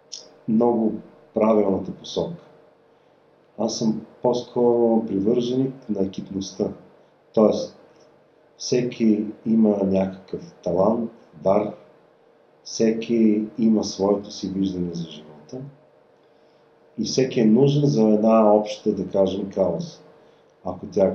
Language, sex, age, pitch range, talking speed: Bulgarian, male, 40-59, 95-120 Hz, 95 wpm